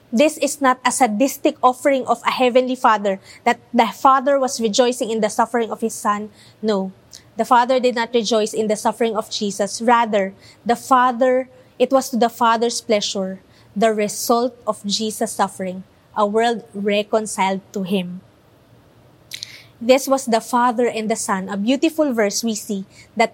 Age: 20-39